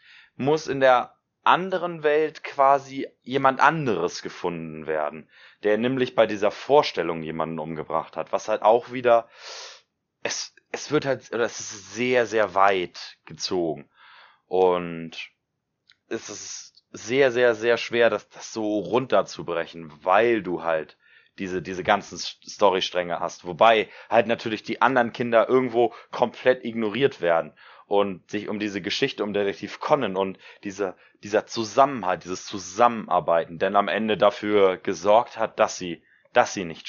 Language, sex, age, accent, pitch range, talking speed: German, male, 30-49, German, 90-125 Hz, 140 wpm